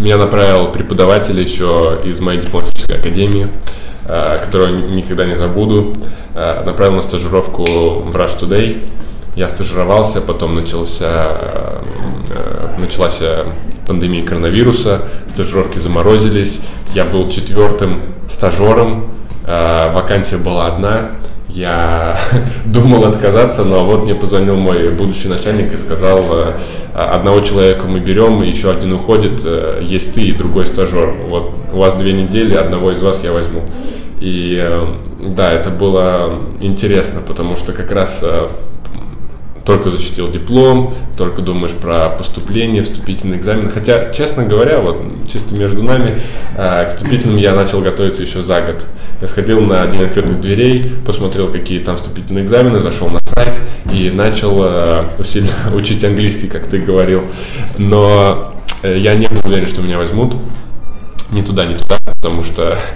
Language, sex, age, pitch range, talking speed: Russian, male, 20-39, 90-105 Hz, 130 wpm